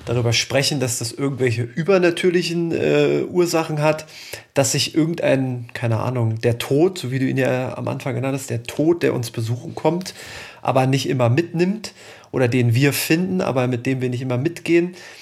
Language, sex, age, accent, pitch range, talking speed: German, male, 30-49, German, 125-165 Hz, 180 wpm